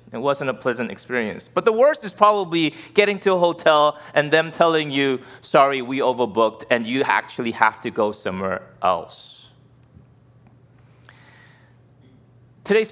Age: 30-49